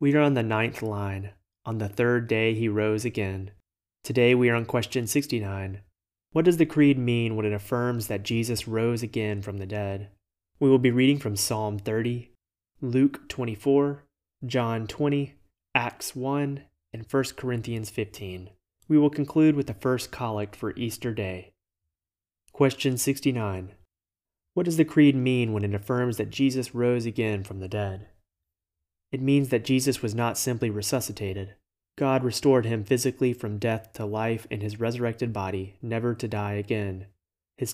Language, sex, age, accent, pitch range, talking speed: English, male, 30-49, American, 100-125 Hz, 165 wpm